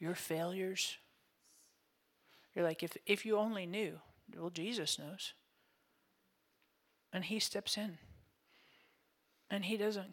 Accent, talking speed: American, 115 wpm